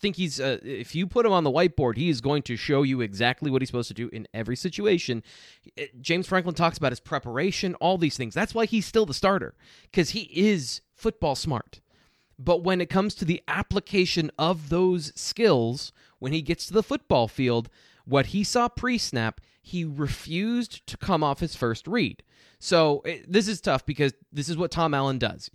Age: 20-39